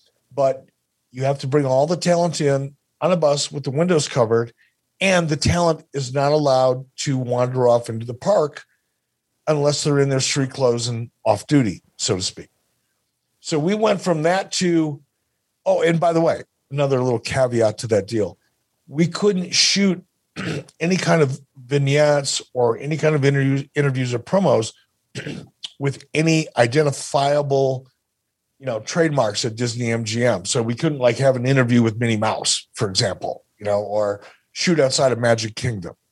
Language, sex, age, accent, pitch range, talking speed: English, male, 50-69, American, 120-160 Hz, 170 wpm